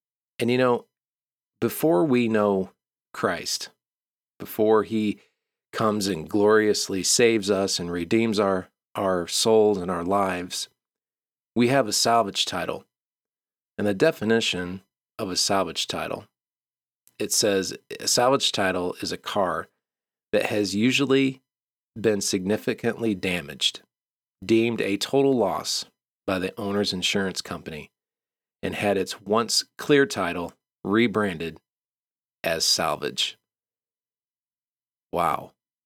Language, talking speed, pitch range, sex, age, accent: English, 110 wpm, 100-115 Hz, male, 40-59, American